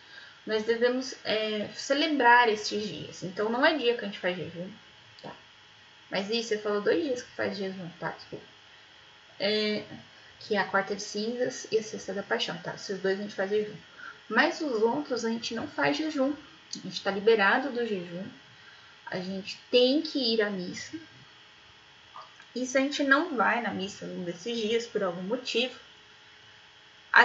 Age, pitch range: 10-29, 195-255 Hz